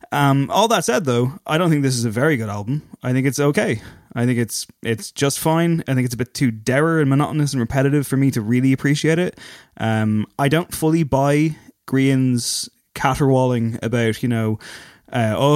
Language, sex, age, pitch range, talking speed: English, male, 20-39, 115-145 Hz, 200 wpm